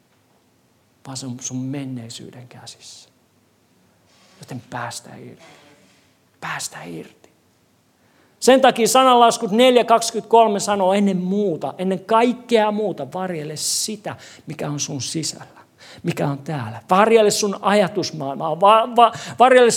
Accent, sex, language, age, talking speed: native, male, Finnish, 50-69, 100 wpm